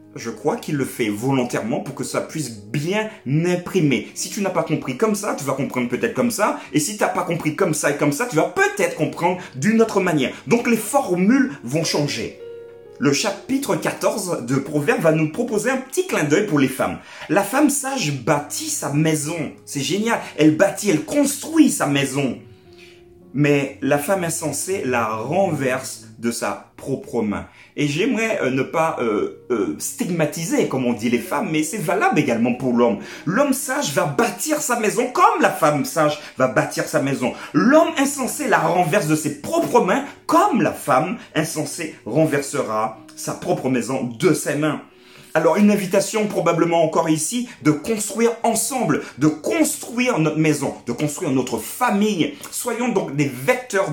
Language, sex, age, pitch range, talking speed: French, male, 30-49, 140-225 Hz, 175 wpm